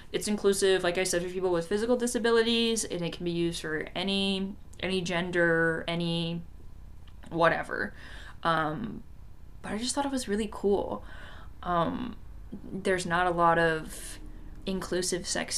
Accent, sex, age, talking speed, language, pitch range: American, female, 20-39, 145 wpm, English, 160-200 Hz